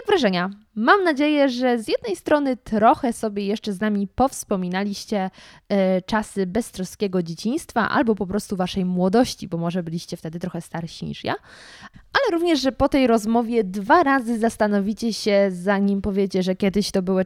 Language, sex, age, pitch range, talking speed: Polish, female, 20-39, 190-245 Hz, 155 wpm